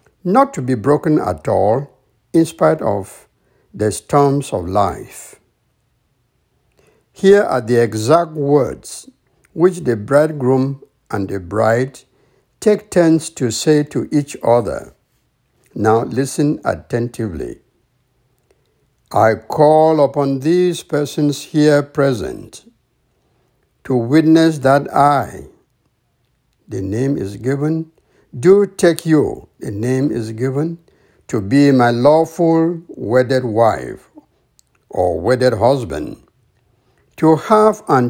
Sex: male